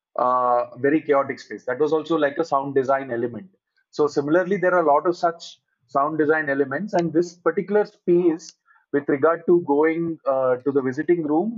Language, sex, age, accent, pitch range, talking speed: Telugu, male, 20-39, native, 140-175 Hz, 190 wpm